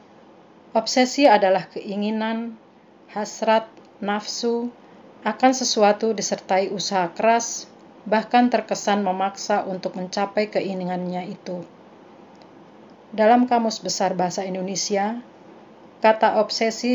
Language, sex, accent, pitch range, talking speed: Indonesian, female, native, 190-220 Hz, 85 wpm